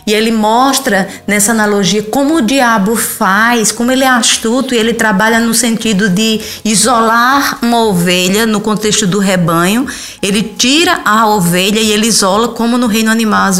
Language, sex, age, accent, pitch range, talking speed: Portuguese, female, 20-39, Brazilian, 200-245 Hz, 170 wpm